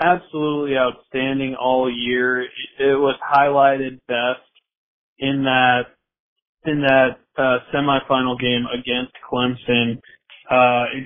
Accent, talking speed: American, 105 wpm